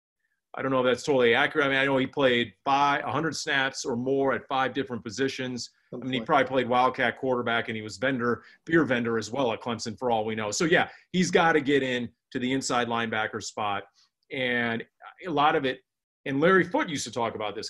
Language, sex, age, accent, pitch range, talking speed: English, male, 40-59, American, 130-175 Hz, 230 wpm